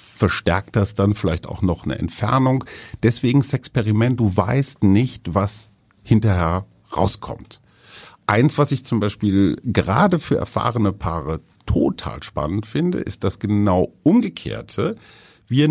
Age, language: 50-69, German